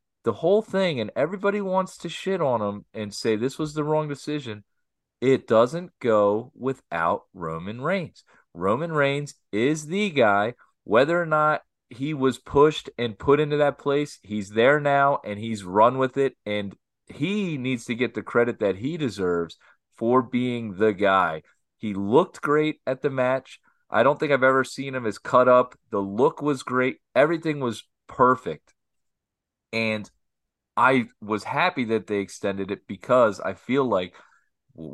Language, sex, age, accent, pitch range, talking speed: English, male, 30-49, American, 105-145 Hz, 165 wpm